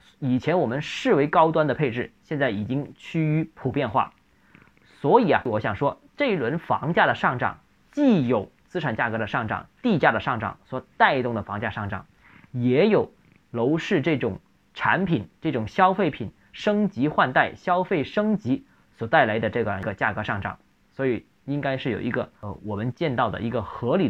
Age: 20-39